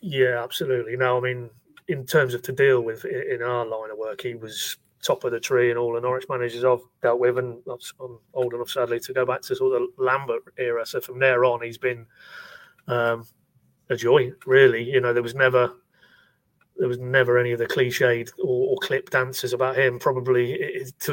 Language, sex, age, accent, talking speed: English, male, 30-49, British, 210 wpm